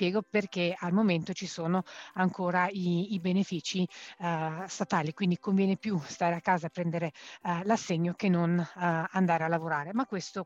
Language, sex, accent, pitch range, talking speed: Italian, female, native, 170-200 Hz, 165 wpm